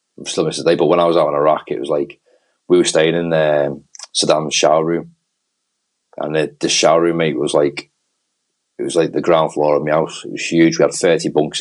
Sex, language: male, English